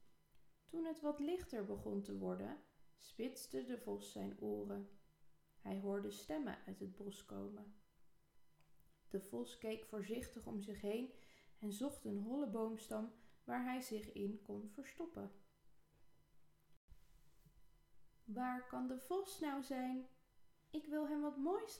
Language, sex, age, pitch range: Dutch, female, 20-39, 165-265 Hz